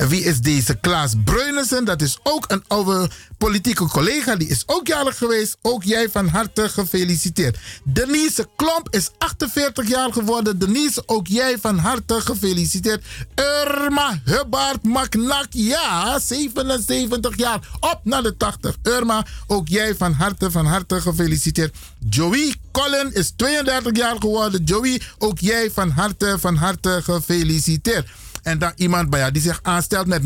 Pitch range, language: 145-235 Hz, Dutch